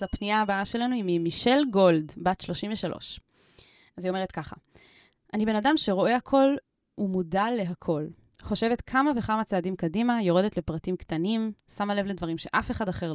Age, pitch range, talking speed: 20-39, 175-225 Hz, 150 wpm